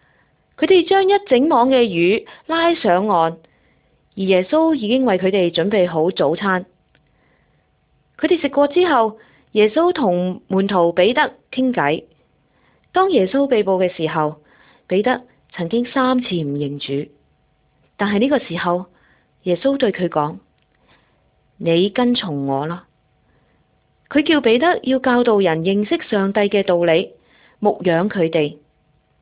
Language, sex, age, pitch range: Malay, female, 20-39, 165-250 Hz